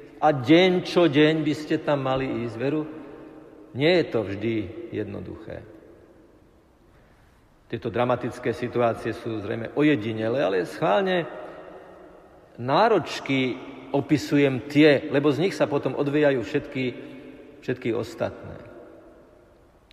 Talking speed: 105 wpm